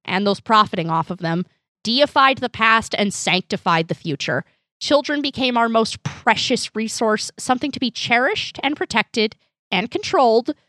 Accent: American